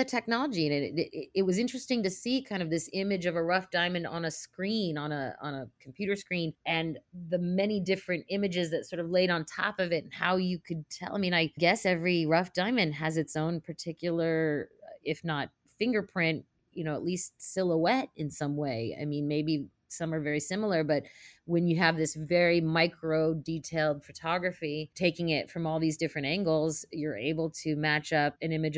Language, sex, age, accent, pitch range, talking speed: English, female, 30-49, American, 155-185 Hz, 200 wpm